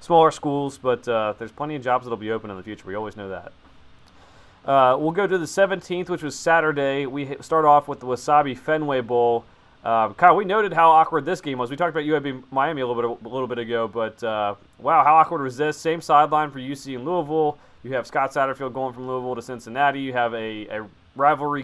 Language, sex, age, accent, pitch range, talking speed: English, male, 30-49, American, 115-140 Hz, 235 wpm